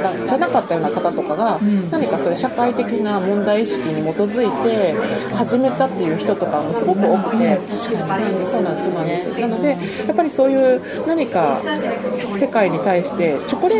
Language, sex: Japanese, female